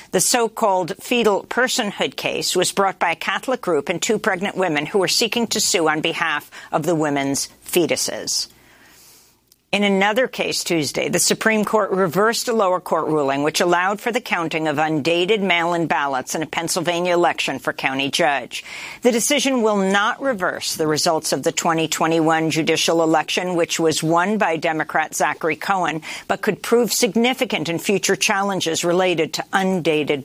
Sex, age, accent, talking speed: female, 50-69, American, 165 wpm